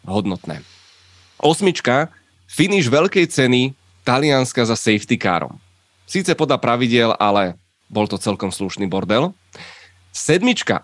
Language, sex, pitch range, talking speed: Czech, male, 100-135 Hz, 105 wpm